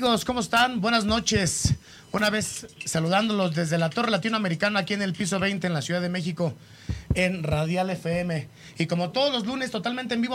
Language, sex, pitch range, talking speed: Spanish, male, 155-200 Hz, 185 wpm